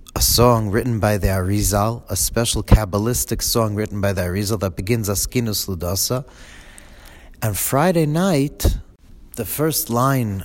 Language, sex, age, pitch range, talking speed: English, male, 40-59, 100-130 Hz, 140 wpm